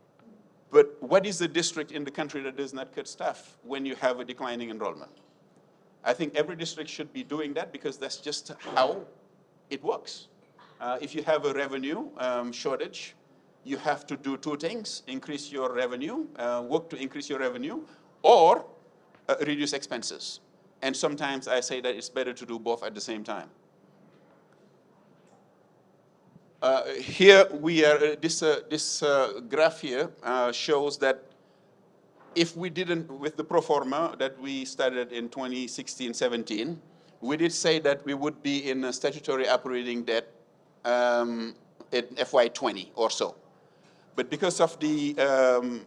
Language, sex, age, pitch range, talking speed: English, male, 50-69, 130-155 Hz, 160 wpm